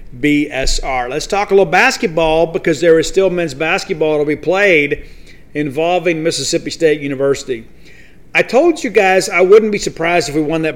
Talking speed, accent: 175 wpm, American